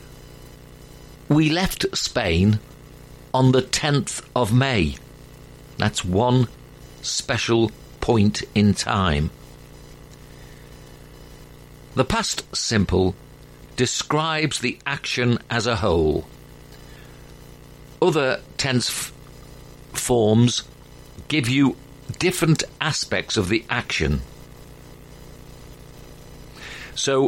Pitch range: 90-140 Hz